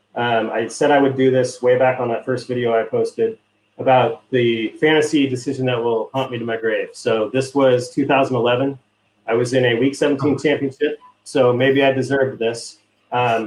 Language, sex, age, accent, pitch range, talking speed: English, male, 30-49, American, 115-145 Hz, 190 wpm